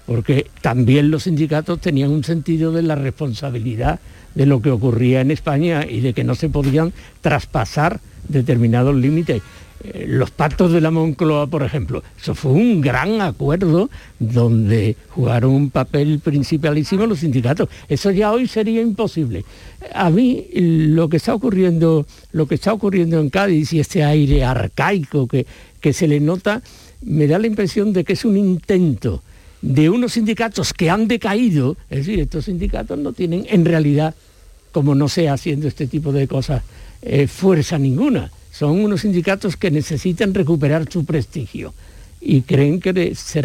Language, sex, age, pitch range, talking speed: Spanish, male, 60-79, 135-180 Hz, 160 wpm